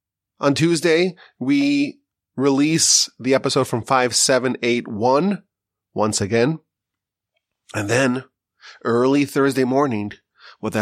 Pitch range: 115-135 Hz